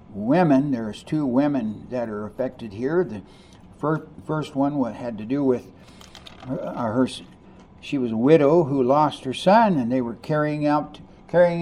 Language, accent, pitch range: English, American, 120-160 Hz